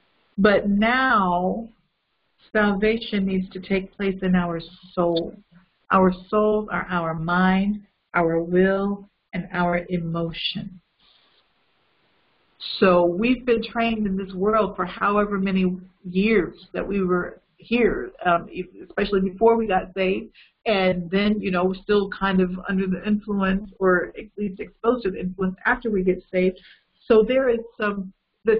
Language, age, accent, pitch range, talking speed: English, 50-69, American, 185-220 Hz, 145 wpm